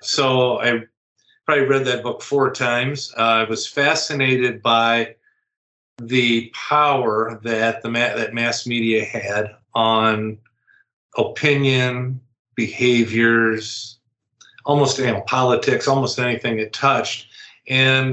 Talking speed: 115 wpm